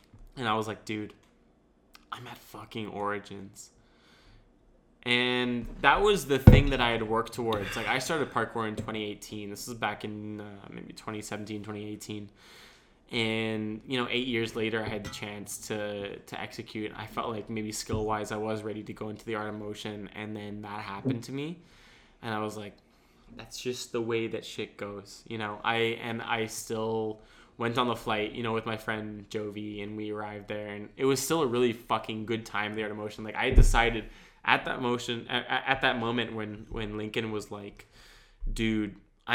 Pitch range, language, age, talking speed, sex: 105-120 Hz, English, 20-39, 195 wpm, male